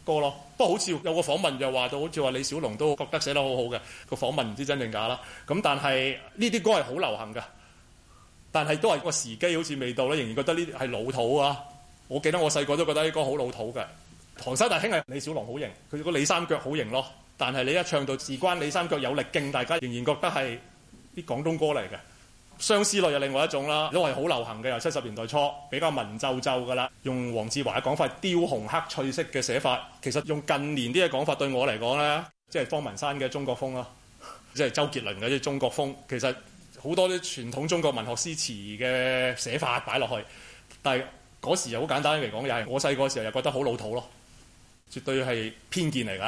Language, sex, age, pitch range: Chinese, male, 30-49, 125-155 Hz